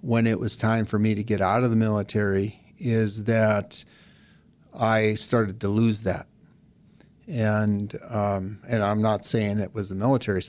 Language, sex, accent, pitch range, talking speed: English, male, American, 100-115 Hz, 165 wpm